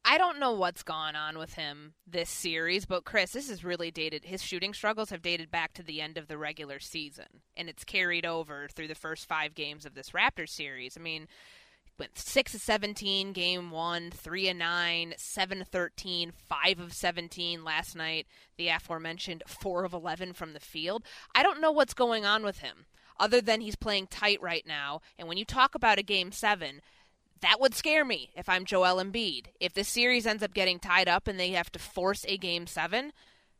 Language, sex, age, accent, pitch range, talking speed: English, female, 20-39, American, 170-230 Hz, 210 wpm